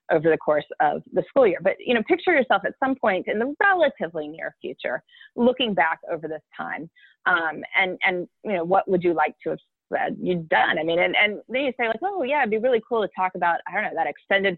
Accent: American